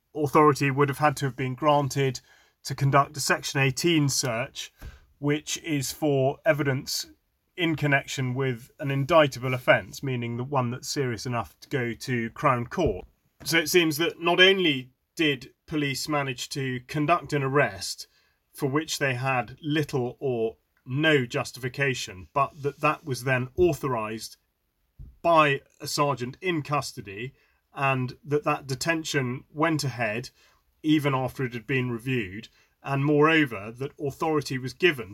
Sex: male